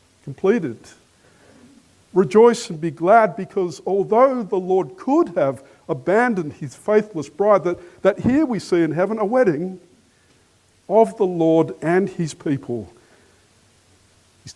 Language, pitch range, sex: English, 120-195 Hz, male